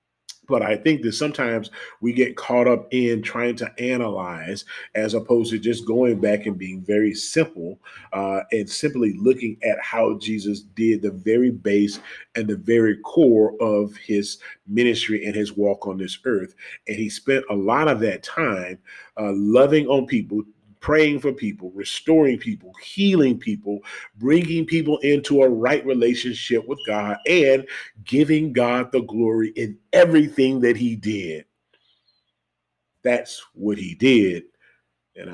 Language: English